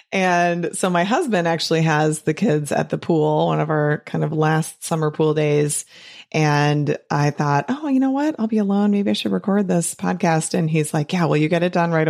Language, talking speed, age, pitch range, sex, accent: English, 230 wpm, 30-49, 160-225 Hz, female, American